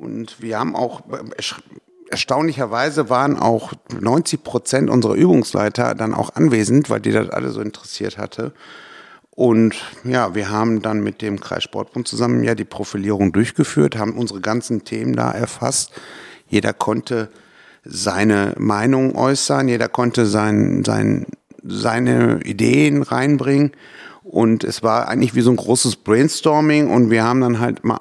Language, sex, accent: German, male, German